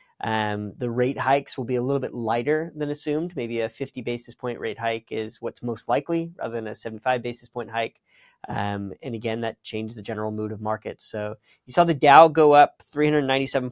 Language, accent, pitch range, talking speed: English, American, 115-145 Hz, 210 wpm